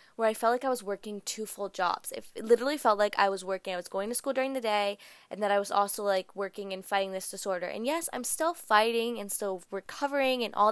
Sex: female